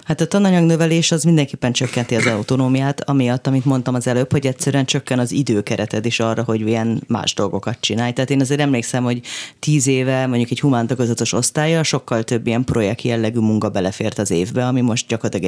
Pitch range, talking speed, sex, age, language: 120-145 Hz, 185 wpm, female, 30-49, Hungarian